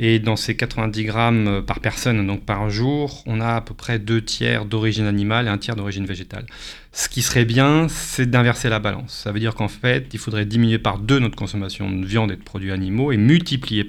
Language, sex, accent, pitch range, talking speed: French, male, French, 110-130 Hz, 225 wpm